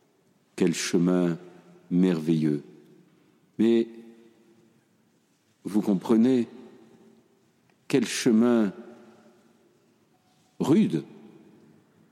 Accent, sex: French, male